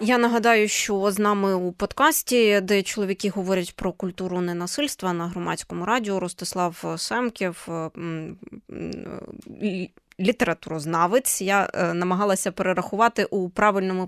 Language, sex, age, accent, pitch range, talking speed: Ukrainian, female, 20-39, native, 190-240 Hz, 100 wpm